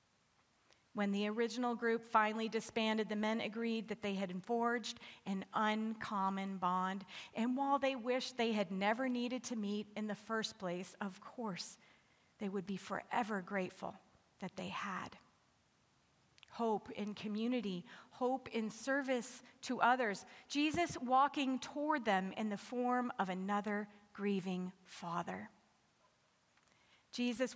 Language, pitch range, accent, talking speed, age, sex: English, 195-235 Hz, American, 130 wpm, 40-59, female